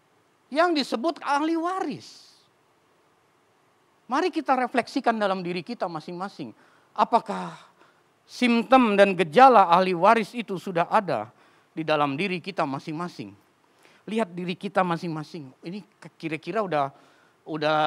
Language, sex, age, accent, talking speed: Indonesian, male, 40-59, native, 110 wpm